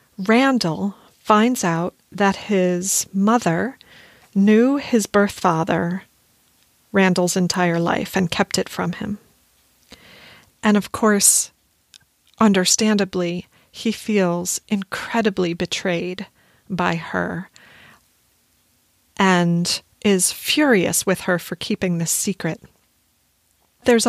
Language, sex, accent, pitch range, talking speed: English, female, American, 185-230 Hz, 95 wpm